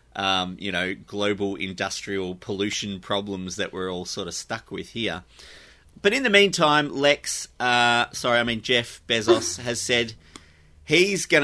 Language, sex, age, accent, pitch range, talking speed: English, male, 30-49, Australian, 95-115 Hz, 155 wpm